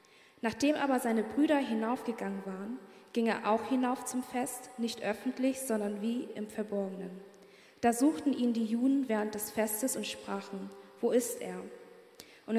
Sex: female